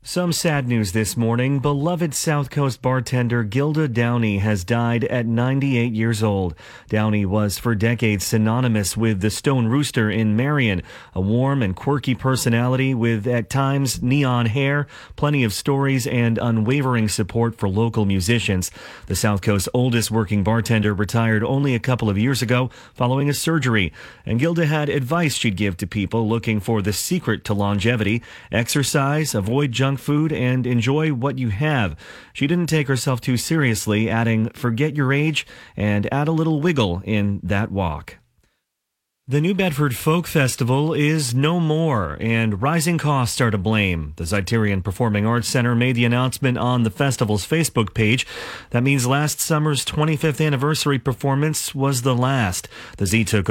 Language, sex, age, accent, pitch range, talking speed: English, male, 30-49, American, 110-140 Hz, 160 wpm